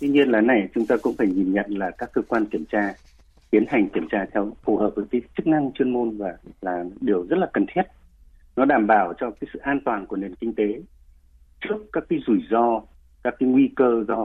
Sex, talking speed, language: male, 245 wpm, Vietnamese